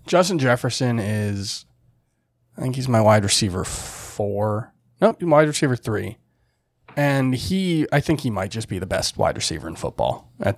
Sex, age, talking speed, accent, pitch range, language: male, 20-39, 165 wpm, American, 105-125 Hz, English